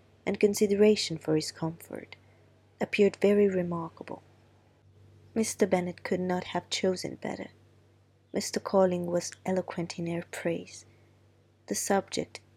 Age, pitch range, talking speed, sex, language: 20-39, 110-185 Hz, 115 wpm, female, Italian